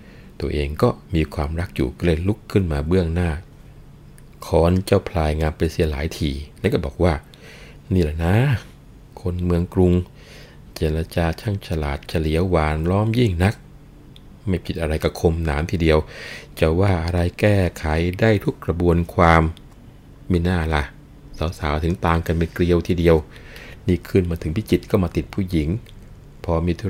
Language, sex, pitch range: Thai, male, 80-95 Hz